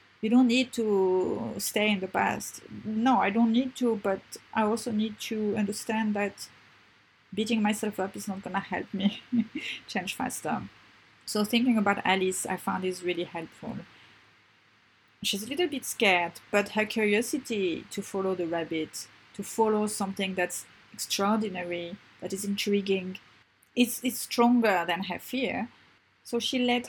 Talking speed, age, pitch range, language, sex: 150 wpm, 30-49, 185-230 Hz, English, female